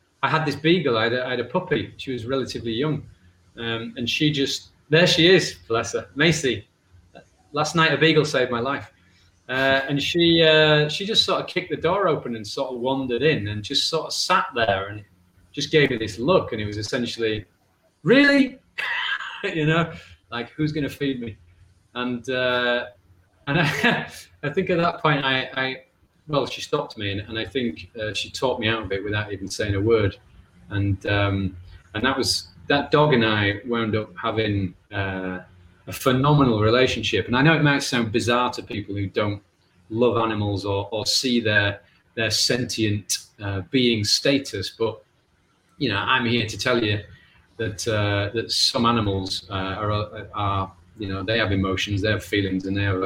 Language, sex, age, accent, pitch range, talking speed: English, male, 30-49, British, 100-135 Hz, 190 wpm